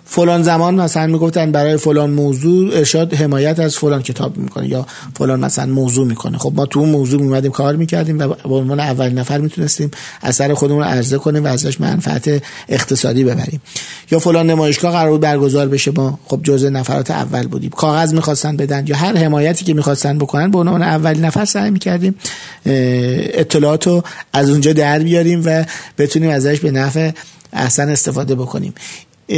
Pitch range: 140-165 Hz